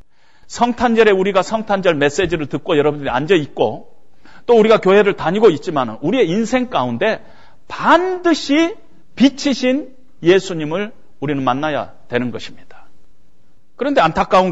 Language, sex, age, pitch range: Korean, male, 40-59, 190-265 Hz